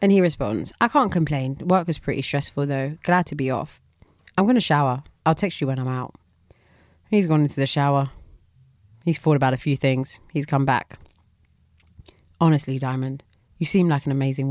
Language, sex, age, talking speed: English, female, 30-49, 190 wpm